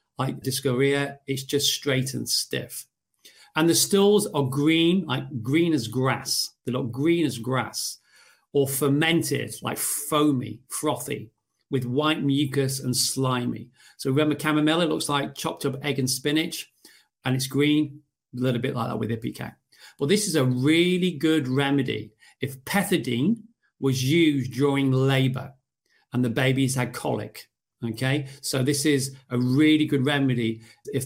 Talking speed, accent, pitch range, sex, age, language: 150 wpm, British, 125-155 Hz, male, 40-59, English